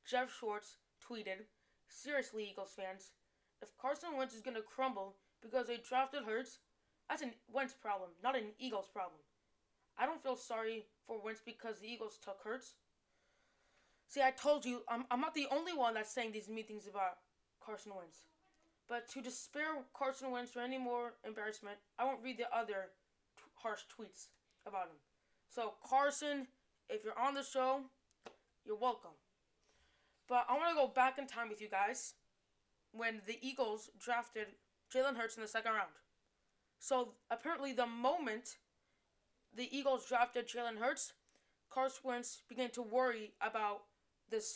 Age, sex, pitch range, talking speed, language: 20-39, female, 215-260 Hz, 160 wpm, English